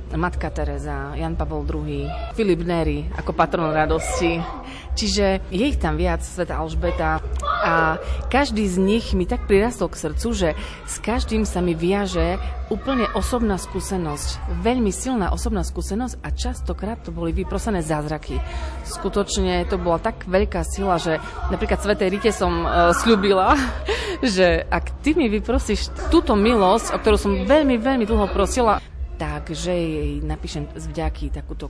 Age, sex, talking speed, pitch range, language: 30-49, female, 150 wpm, 150-205 Hz, Slovak